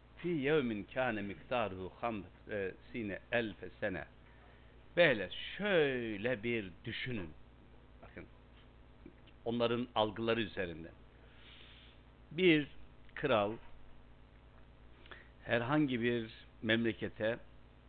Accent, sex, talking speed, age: native, male, 65 wpm, 60-79